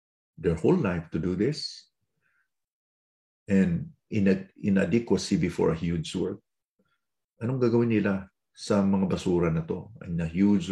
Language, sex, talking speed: English, male, 130 wpm